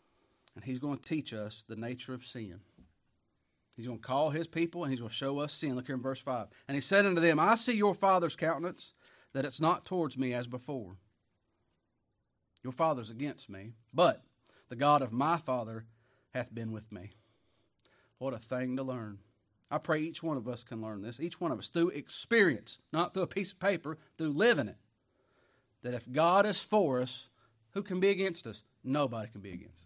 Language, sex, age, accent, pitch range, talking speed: English, male, 40-59, American, 110-155 Hz, 205 wpm